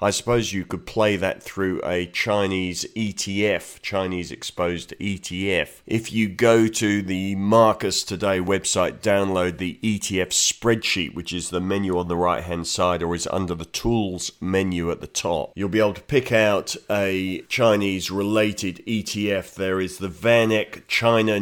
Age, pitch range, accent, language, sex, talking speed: 40-59, 90-105 Hz, British, English, male, 155 wpm